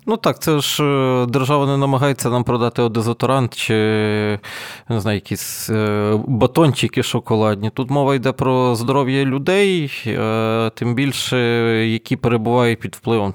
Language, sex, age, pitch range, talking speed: Ukrainian, male, 20-39, 115-140 Hz, 125 wpm